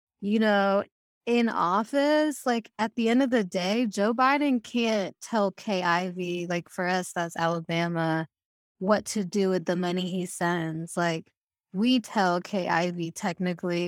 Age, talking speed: 20-39, 145 wpm